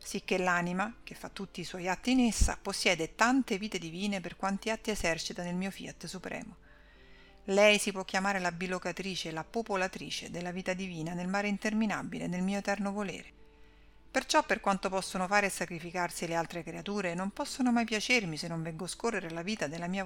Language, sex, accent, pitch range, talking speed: Italian, female, native, 175-210 Hz, 195 wpm